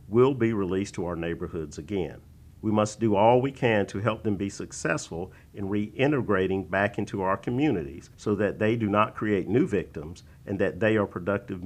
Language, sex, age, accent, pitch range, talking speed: English, male, 50-69, American, 95-120 Hz, 190 wpm